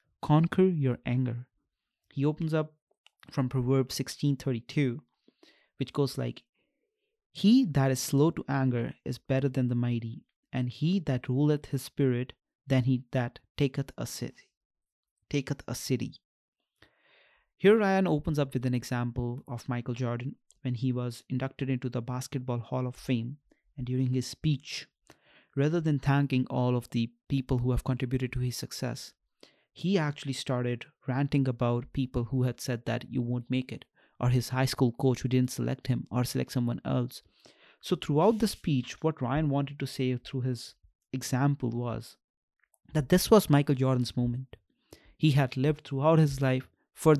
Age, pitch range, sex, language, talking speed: 30-49, 125-145 Hz, male, English, 165 wpm